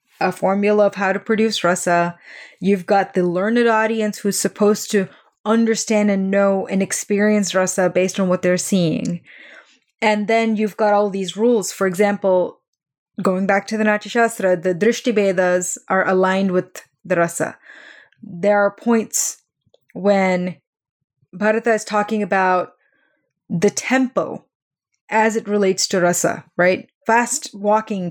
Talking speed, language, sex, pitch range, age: 145 wpm, English, female, 185-225 Hz, 20-39